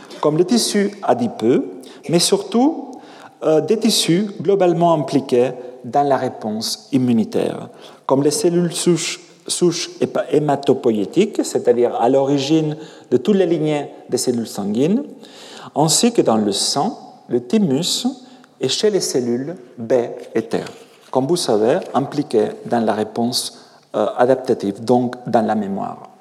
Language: French